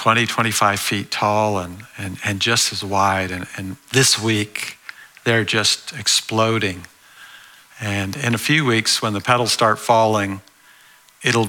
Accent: American